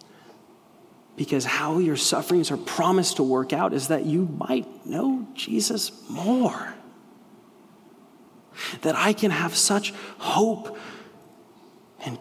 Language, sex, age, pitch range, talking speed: English, male, 30-49, 125-180 Hz, 115 wpm